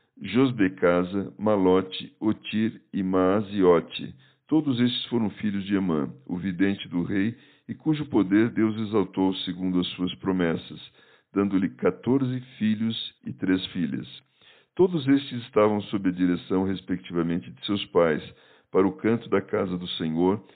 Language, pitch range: Portuguese, 90-110 Hz